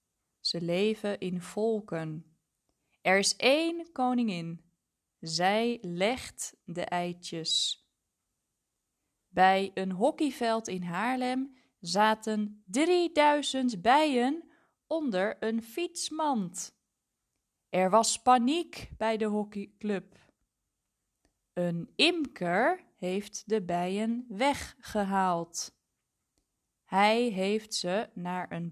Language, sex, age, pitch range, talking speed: Dutch, female, 20-39, 180-240 Hz, 85 wpm